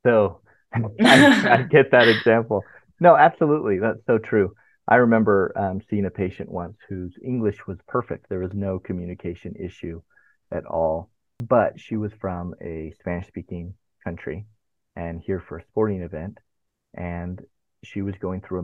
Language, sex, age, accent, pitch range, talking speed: English, male, 30-49, American, 85-105 Hz, 150 wpm